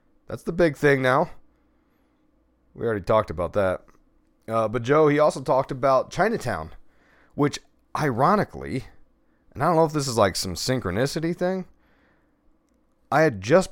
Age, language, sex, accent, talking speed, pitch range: 30-49, English, male, American, 150 wpm, 105-145 Hz